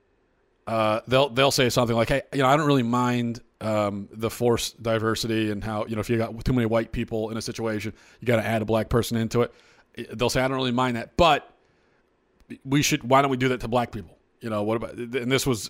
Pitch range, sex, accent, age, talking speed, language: 115-140 Hz, male, American, 40-59, 250 wpm, English